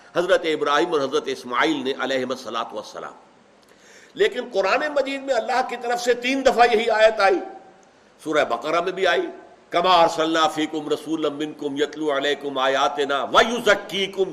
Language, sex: Urdu, male